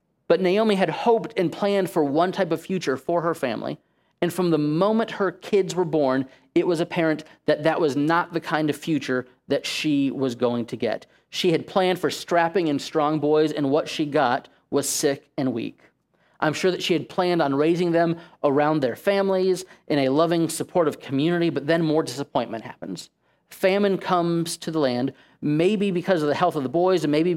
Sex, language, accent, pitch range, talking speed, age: male, English, American, 145-175 Hz, 200 wpm, 40-59